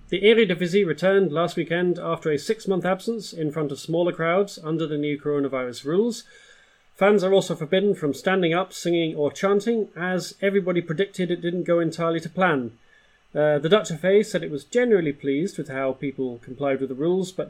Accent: British